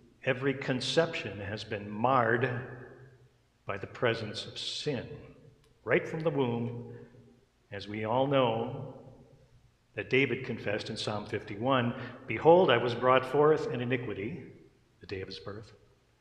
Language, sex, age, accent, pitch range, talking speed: English, male, 50-69, American, 115-140 Hz, 135 wpm